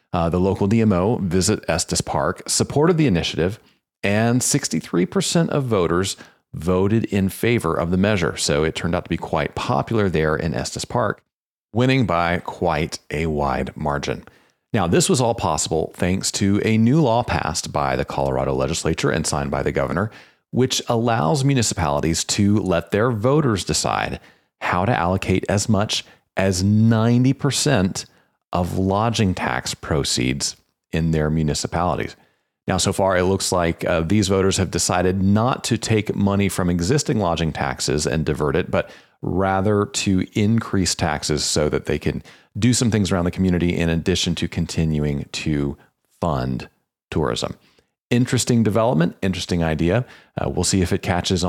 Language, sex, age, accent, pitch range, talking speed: English, male, 40-59, American, 80-105 Hz, 155 wpm